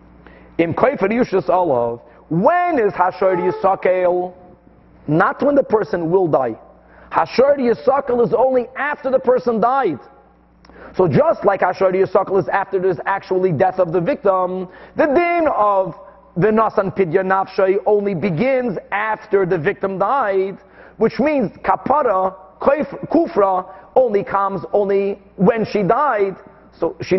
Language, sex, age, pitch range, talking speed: English, male, 40-59, 185-240 Hz, 130 wpm